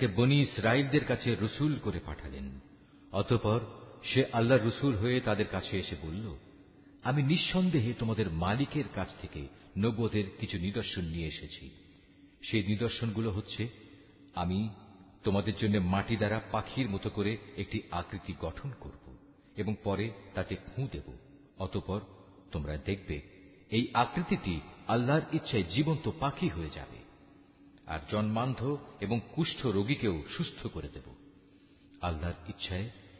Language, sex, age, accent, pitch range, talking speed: Bengali, male, 50-69, native, 95-130 Hz, 120 wpm